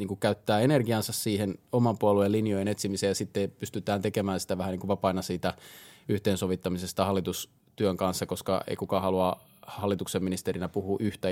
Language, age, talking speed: Finnish, 20-39, 150 wpm